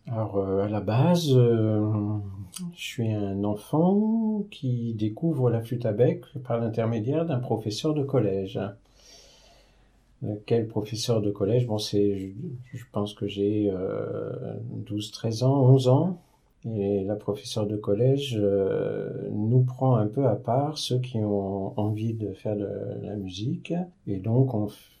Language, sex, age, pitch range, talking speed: French, male, 50-69, 105-130 Hz, 160 wpm